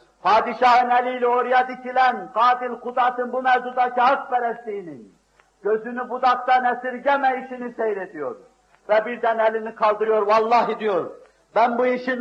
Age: 50-69